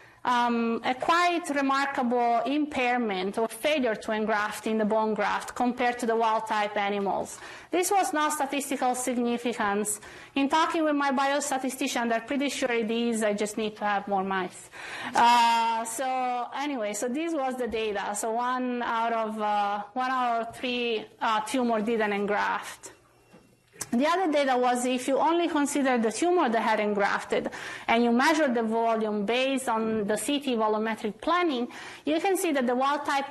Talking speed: 165 wpm